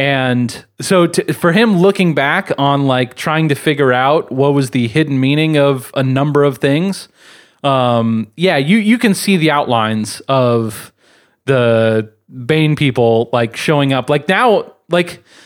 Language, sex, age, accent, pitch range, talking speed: English, male, 30-49, American, 115-155 Hz, 160 wpm